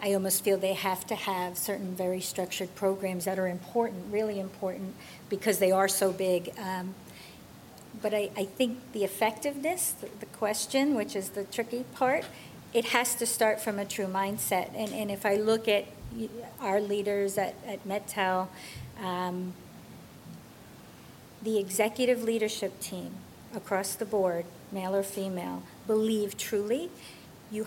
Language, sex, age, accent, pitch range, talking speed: English, female, 50-69, American, 185-220 Hz, 150 wpm